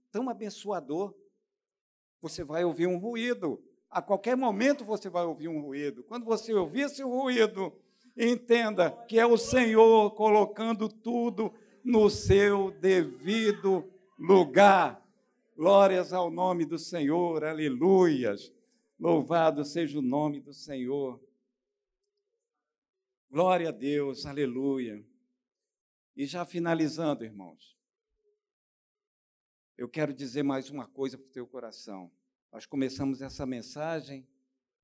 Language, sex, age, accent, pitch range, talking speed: Portuguese, male, 60-79, Brazilian, 135-220 Hz, 110 wpm